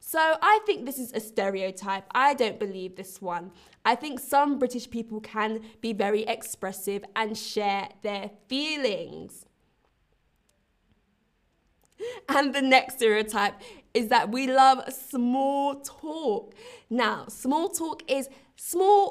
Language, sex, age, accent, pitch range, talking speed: English, female, 20-39, British, 215-285 Hz, 125 wpm